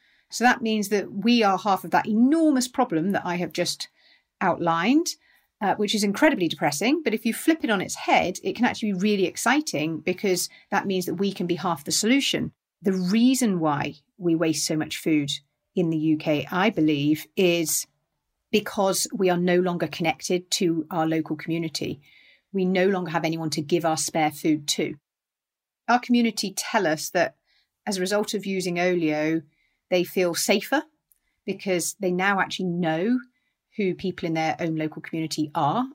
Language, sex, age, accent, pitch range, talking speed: English, female, 40-59, British, 160-200 Hz, 180 wpm